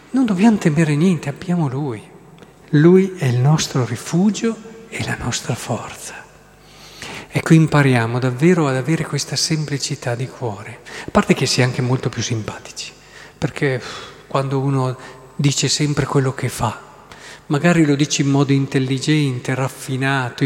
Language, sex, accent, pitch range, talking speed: Italian, male, native, 130-160 Hz, 140 wpm